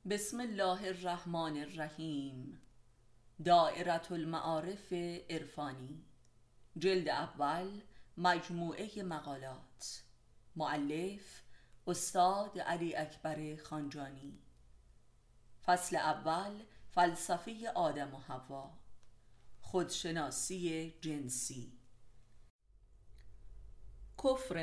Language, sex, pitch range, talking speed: Persian, female, 135-185 Hz, 60 wpm